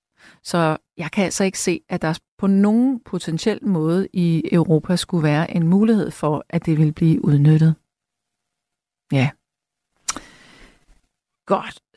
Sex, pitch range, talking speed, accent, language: female, 180-260 Hz, 130 wpm, native, Danish